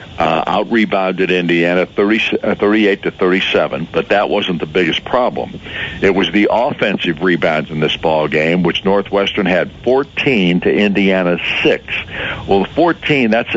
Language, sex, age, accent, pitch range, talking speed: English, male, 60-79, American, 90-110 Hz, 145 wpm